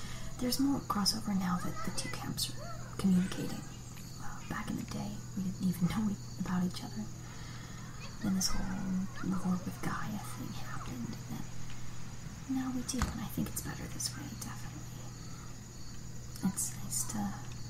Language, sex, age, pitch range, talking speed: English, female, 40-59, 125-185 Hz, 155 wpm